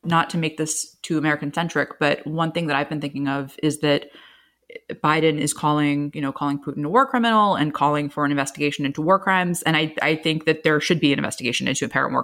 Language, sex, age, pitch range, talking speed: English, female, 20-39, 150-185 Hz, 230 wpm